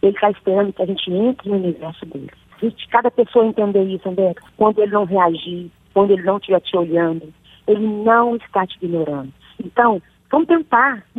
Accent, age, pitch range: Brazilian, 40-59, 185-220 Hz